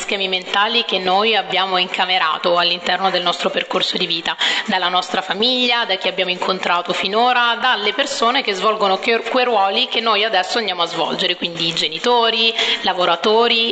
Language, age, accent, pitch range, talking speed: Italian, 30-49, native, 185-225 Hz, 155 wpm